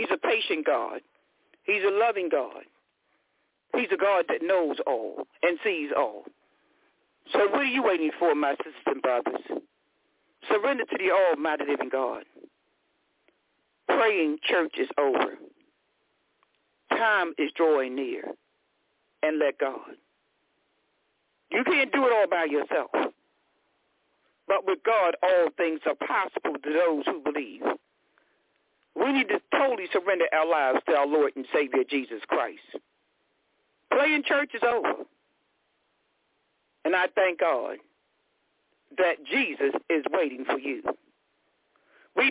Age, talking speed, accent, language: 60-79, 130 wpm, American, English